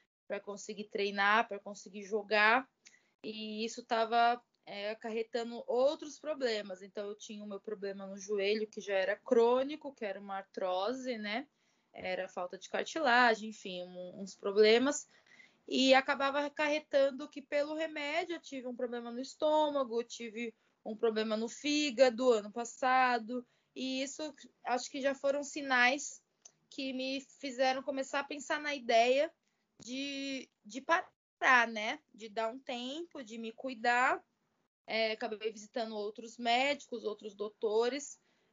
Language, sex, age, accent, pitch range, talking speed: Portuguese, female, 20-39, Brazilian, 215-270 Hz, 135 wpm